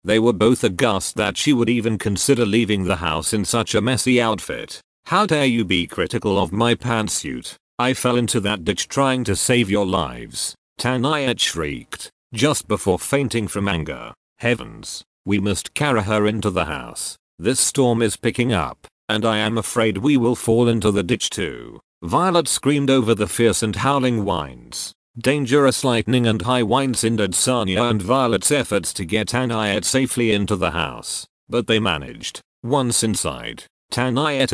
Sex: male